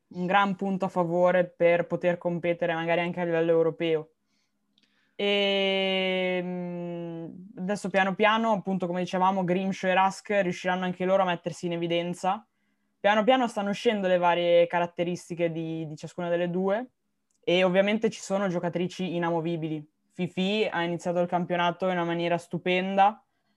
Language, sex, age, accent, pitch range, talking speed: Italian, female, 20-39, native, 170-210 Hz, 145 wpm